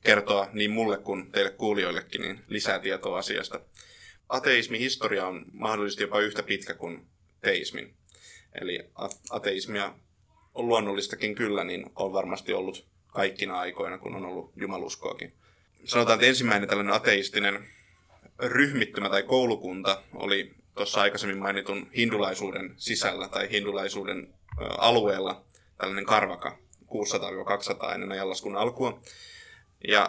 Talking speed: 115 wpm